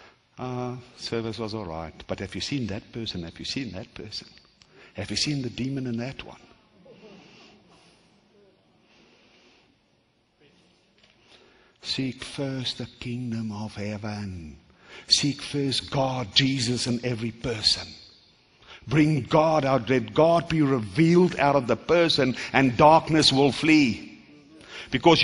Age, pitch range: 60-79, 125-185 Hz